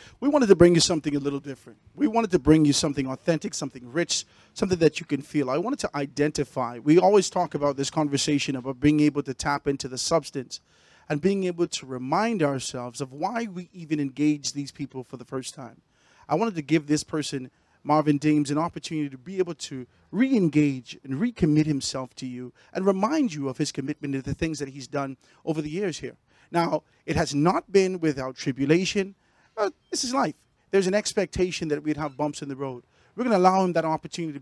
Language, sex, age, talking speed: English, male, 40-59, 215 wpm